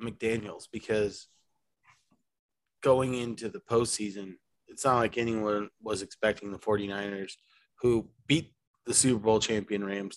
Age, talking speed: 20-39, 125 wpm